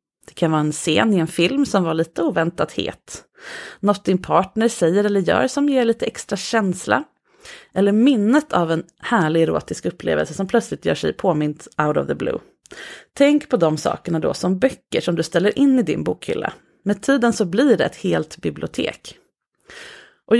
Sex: female